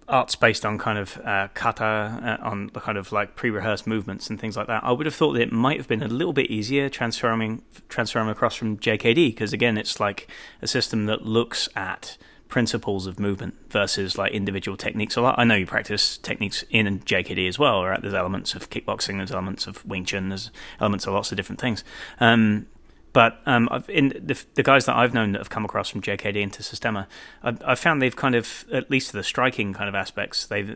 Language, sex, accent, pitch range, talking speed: English, male, British, 100-120 Hz, 225 wpm